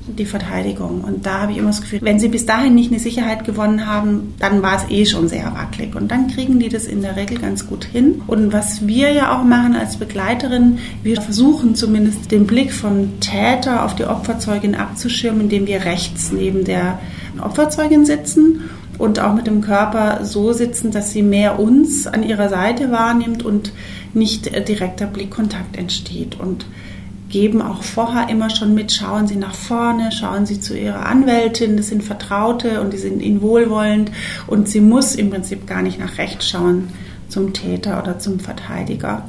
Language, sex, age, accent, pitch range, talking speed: German, female, 30-49, German, 180-225 Hz, 185 wpm